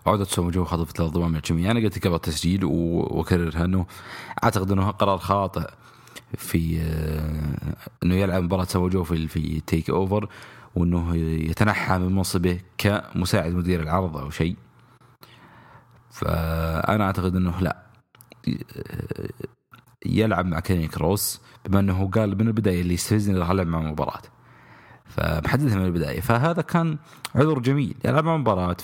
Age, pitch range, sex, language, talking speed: 30-49, 85-110 Hz, male, English, 130 wpm